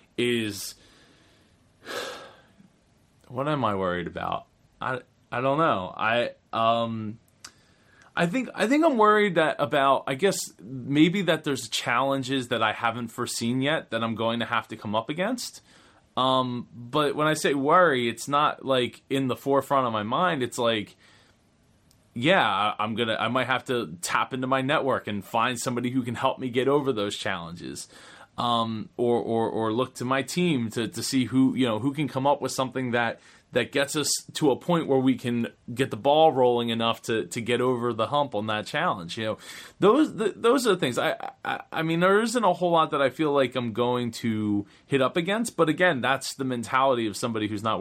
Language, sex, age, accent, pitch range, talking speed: English, male, 20-39, American, 115-140 Hz, 200 wpm